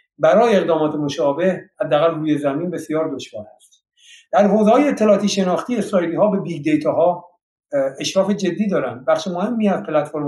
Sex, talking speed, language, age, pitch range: male, 160 wpm, Persian, 50-69, 150-200 Hz